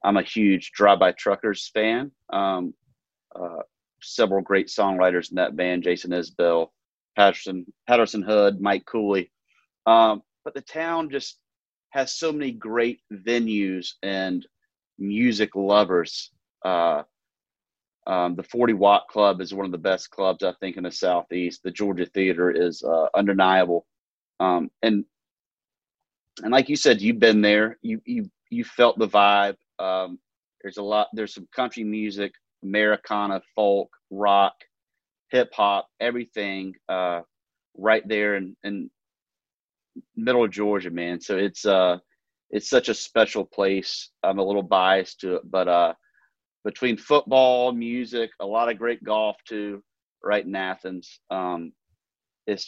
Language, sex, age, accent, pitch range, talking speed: English, male, 30-49, American, 95-115 Hz, 145 wpm